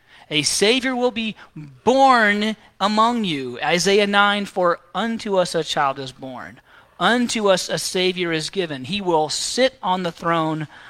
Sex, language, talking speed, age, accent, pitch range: male, English, 155 wpm, 40-59, American, 145-215 Hz